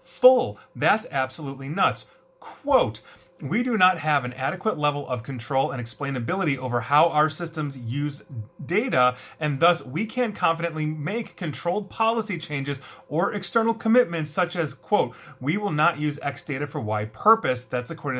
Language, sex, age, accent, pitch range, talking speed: English, male, 30-49, American, 125-175 Hz, 160 wpm